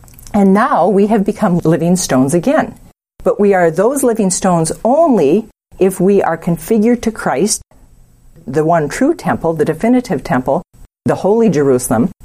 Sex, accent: female, American